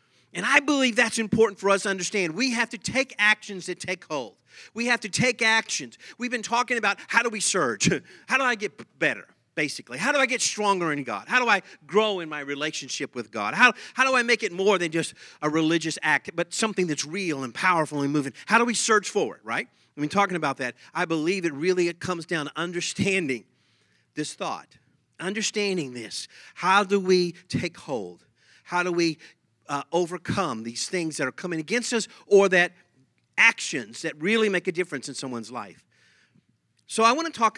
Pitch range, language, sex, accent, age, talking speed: 155-210 Hz, English, male, American, 40-59, 210 wpm